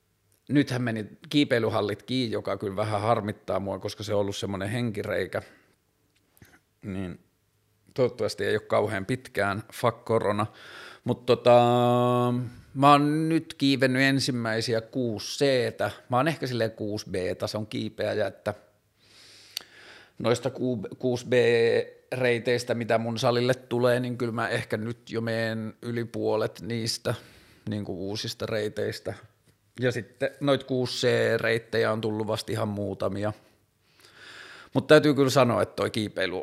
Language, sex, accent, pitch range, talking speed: Finnish, male, native, 105-125 Hz, 125 wpm